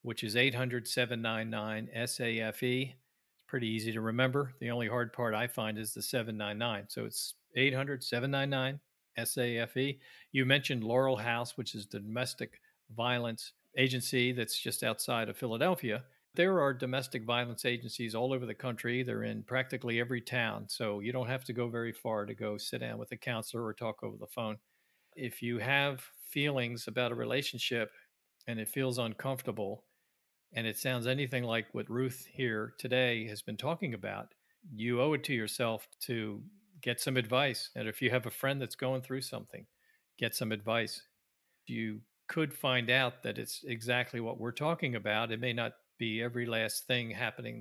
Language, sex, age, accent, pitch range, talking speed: English, male, 50-69, American, 115-130 Hz, 170 wpm